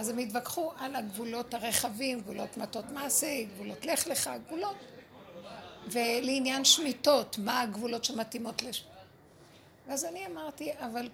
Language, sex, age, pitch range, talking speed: Hebrew, female, 50-69, 230-285 Hz, 125 wpm